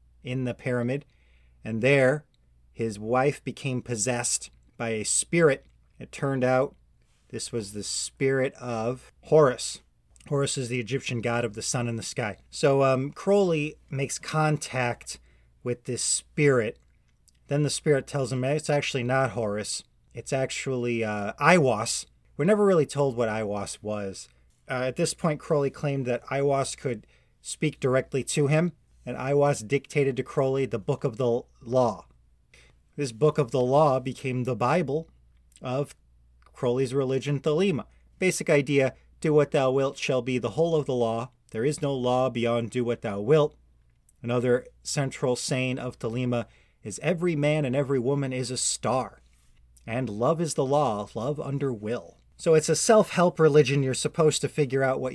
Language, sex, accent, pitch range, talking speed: English, male, American, 115-145 Hz, 165 wpm